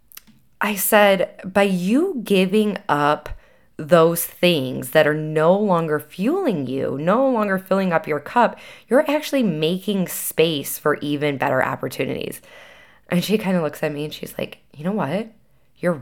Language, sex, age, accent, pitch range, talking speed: English, female, 10-29, American, 150-200 Hz, 155 wpm